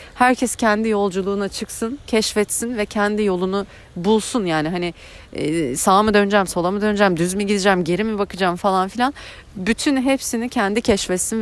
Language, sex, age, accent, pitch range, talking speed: Turkish, female, 30-49, native, 170-210 Hz, 150 wpm